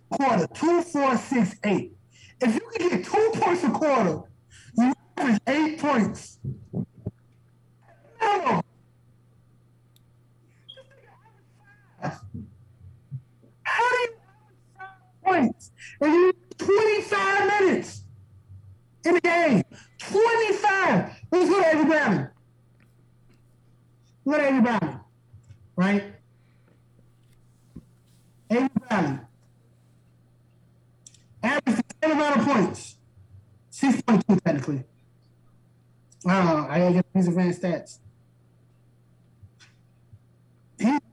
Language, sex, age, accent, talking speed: English, male, 50-69, American, 85 wpm